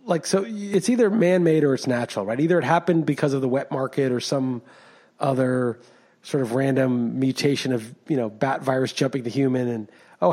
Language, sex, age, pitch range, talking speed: English, male, 30-49, 125-150 Hz, 200 wpm